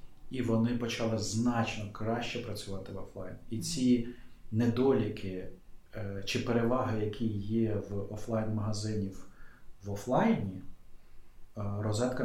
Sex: male